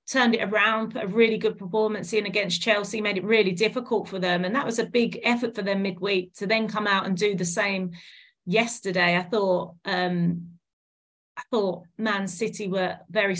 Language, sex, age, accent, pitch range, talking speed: English, female, 30-49, British, 185-220 Hz, 195 wpm